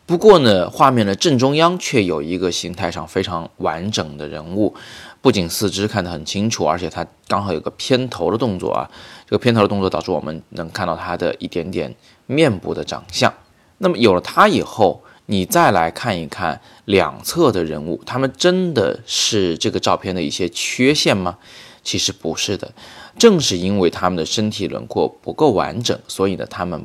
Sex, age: male, 20-39